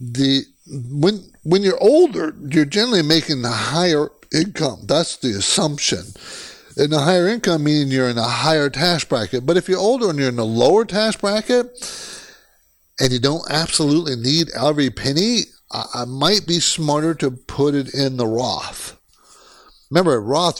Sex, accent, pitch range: male, American, 120-165 Hz